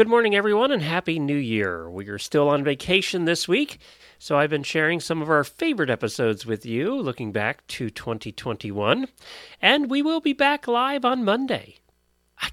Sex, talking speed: male, 180 wpm